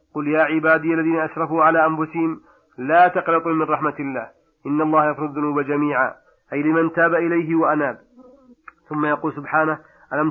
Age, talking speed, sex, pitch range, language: 40-59, 150 wpm, male, 145-165 Hz, Arabic